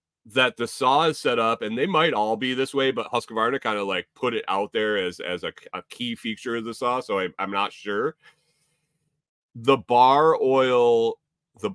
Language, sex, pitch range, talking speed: English, male, 95-135 Hz, 200 wpm